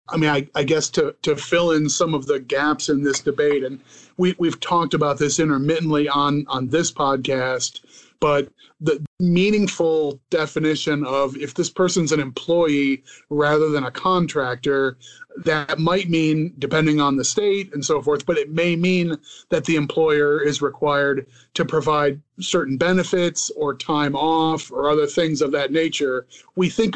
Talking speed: 165 wpm